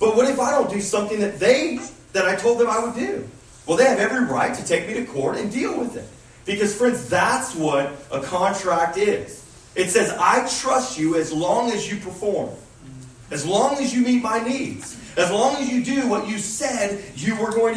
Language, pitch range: English, 145-240 Hz